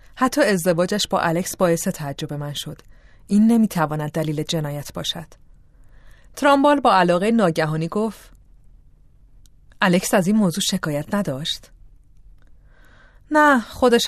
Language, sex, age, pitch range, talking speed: Persian, female, 30-49, 160-220 Hz, 110 wpm